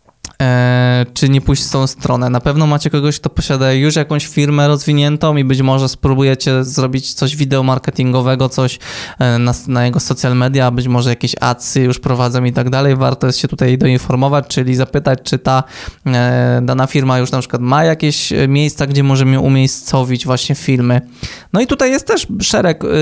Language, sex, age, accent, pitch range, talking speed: Polish, male, 20-39, native, 125-140 Hz, 170 wpm